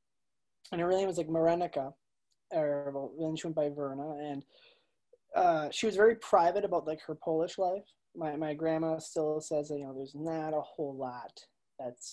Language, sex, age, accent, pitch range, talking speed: English, male, 20-39, American, 150-180 Hz, 190 wpm